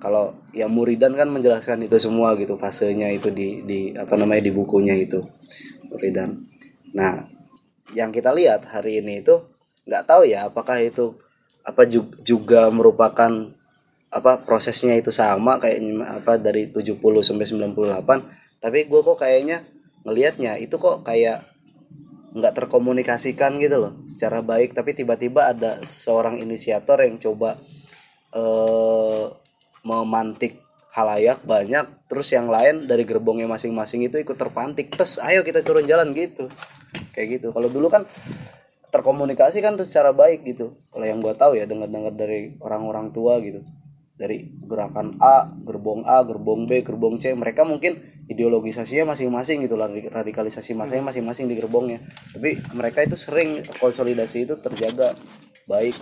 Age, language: 20-39, Indonesian